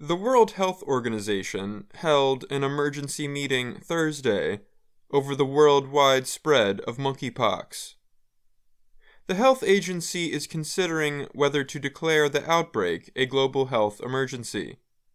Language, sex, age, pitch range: English, male, 20-39, 130-155 Hz